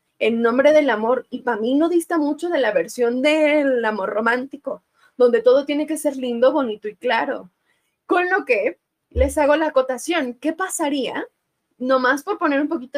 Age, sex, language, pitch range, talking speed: 20-39, female, Spanish, 235-315 Hz, 180 wpm